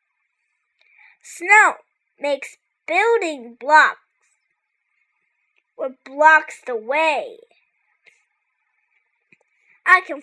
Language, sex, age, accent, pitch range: Chinese, female, 20-39, American, 300-420 Hz